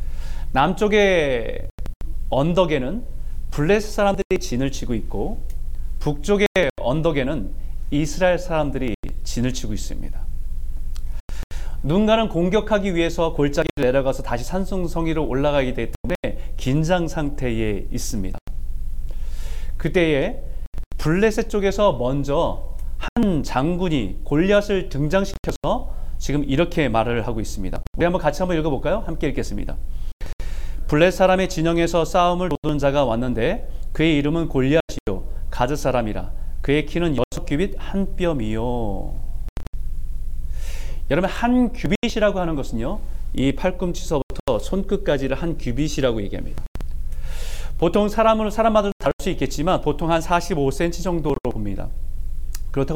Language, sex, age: Korean, male, 30-49